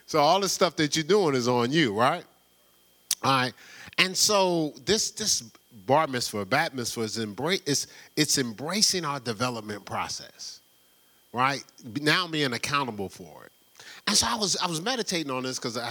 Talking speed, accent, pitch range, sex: 165 wpm, American, 90-150 Hz, male